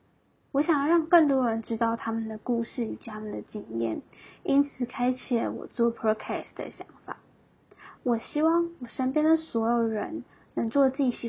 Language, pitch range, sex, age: Chinese, 225-285 Hz, female, 10-29